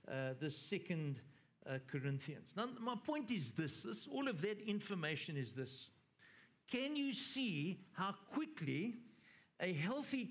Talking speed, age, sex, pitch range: 140 wpm, 60-79, male, 155-225 Hz